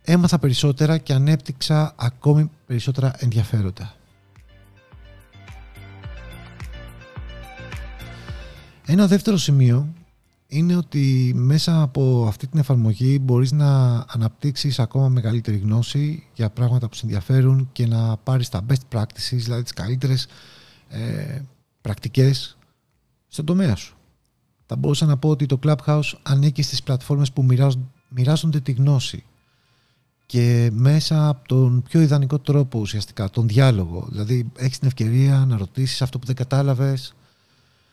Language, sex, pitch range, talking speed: Greek, male, 115-145 Hz, 120 wpm